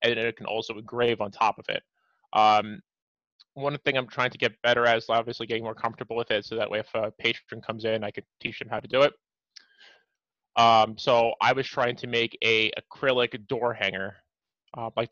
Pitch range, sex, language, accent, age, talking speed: 110-130 Hz, male, English, American, 20-39, 215 wpm